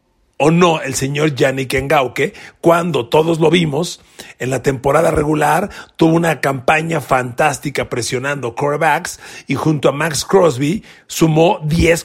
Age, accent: 40-59, Mexican